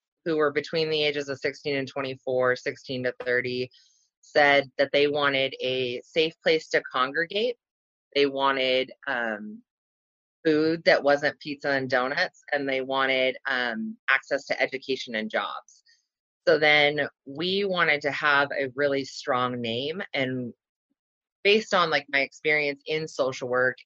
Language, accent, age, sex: English, American, 30-49, female